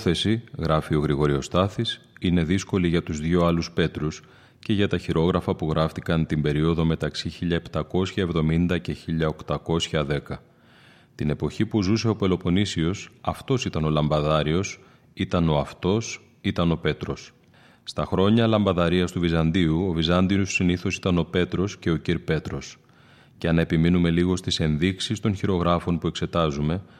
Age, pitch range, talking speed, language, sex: 30-49, 80-95 Hz, 145 wpm, Greek, male